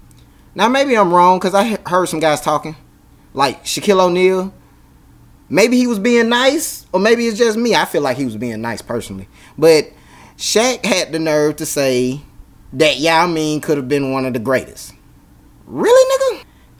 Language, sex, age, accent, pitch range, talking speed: English, male, 20-39, American, 135-205 Hz, 175 wpm